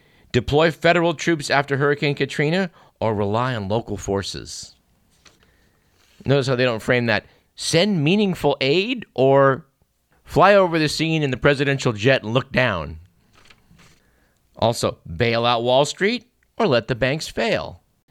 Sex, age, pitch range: male, 50-69, 115-150 Hz